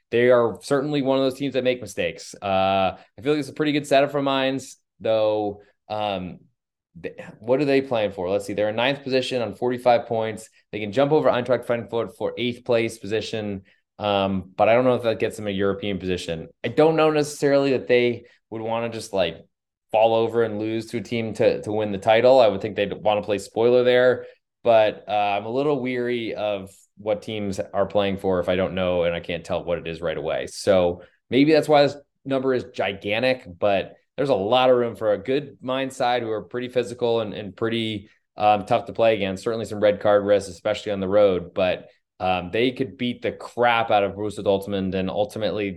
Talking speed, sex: 225 wpm, male